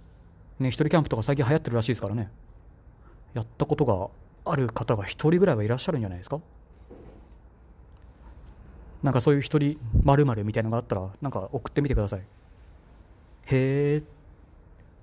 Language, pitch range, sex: Japanese, 95-125 Hz, male